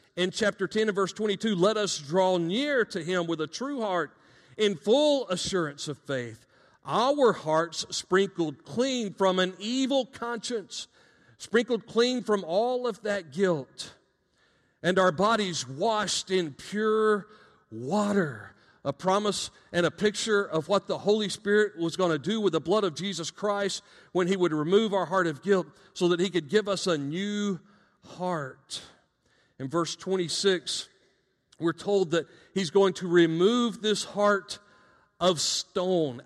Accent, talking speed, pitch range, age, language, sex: American, 155 wpm, 170-210 Hz, 40-59, English, male